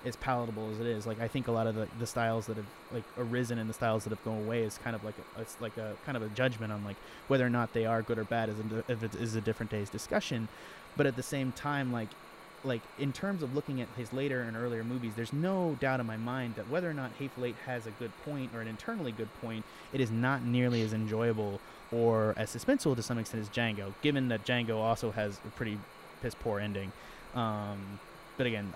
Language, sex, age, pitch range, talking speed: English, male, 20-39, 110-130 Hz, 245 wpm